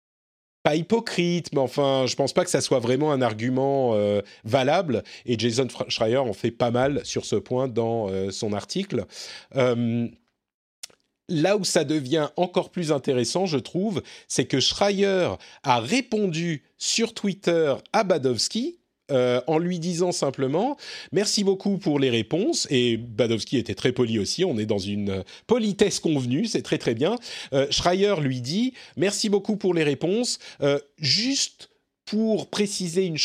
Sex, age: male, 40-59